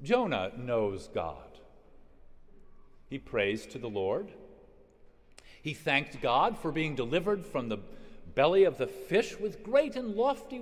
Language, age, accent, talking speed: English, 50-69, American, 135 wpm